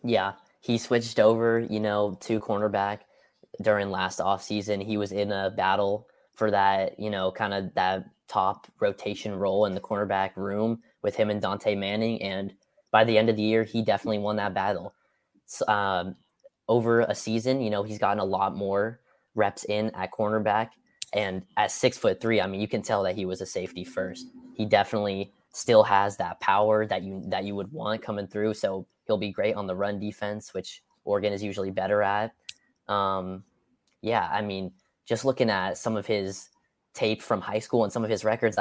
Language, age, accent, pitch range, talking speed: English, 20-39, American, 100-115 Hz, 195 wpm